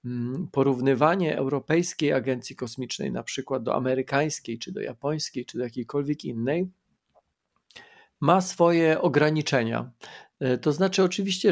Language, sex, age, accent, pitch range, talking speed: Polish, male, 40-59, native, 130-165 Hz, 110 wpm